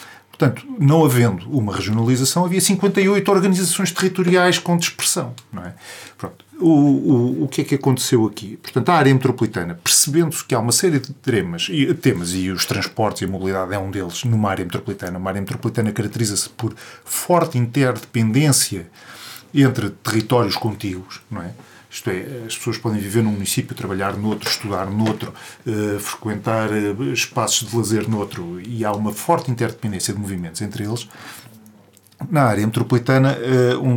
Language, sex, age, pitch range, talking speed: Portuguese, male, 40-59, 105-135 Hz, 155 wpm